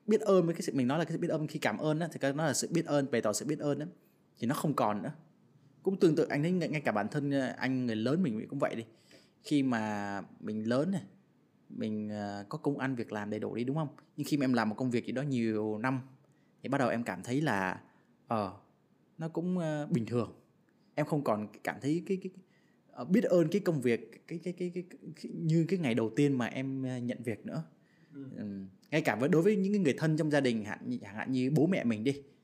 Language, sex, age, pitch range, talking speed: Vietnamese, male, 20-39, 120-175 Hz, 260 wpm